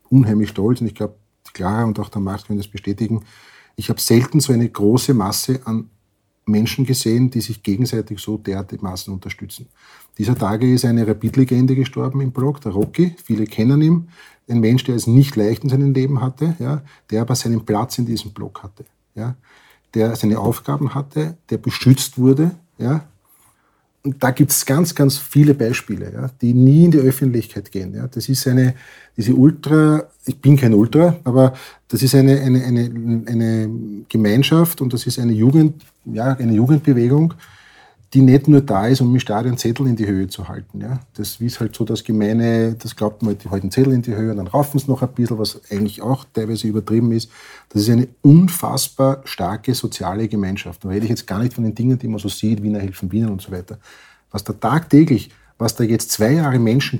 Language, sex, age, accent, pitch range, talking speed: German, male, 40-59, Austrian, 105-135 Hz, 200 wpm